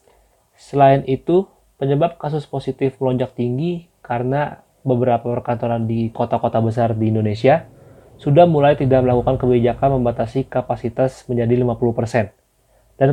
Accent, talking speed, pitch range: native, 115 wpm, 120-135 Hz